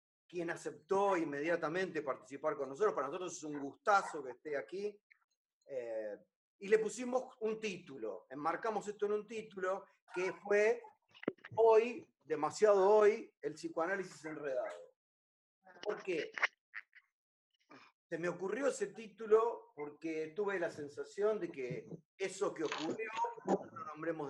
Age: 40-59